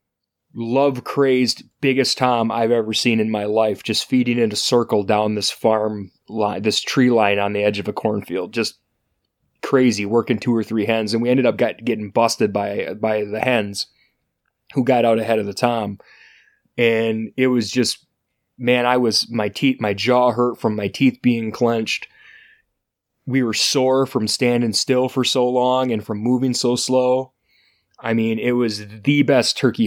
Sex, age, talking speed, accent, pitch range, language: male, 20-39, 180 wpm, American, 105-125 Hz, English